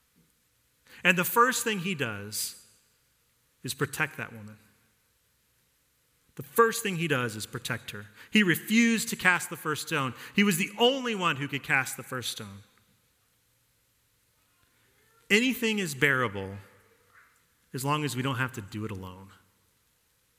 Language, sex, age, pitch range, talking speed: English, male, 40-59, 120-195 Hz, 145 wpm